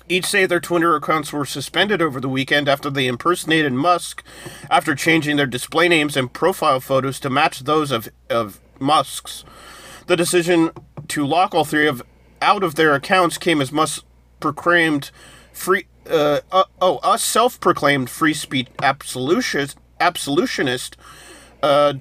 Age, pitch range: 30-49, 140-170 Hz